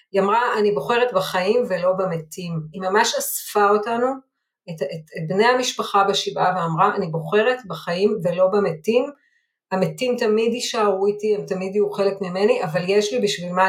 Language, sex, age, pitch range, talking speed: Hebrew, female, 30-49, 180-220 Hz, 160 wpm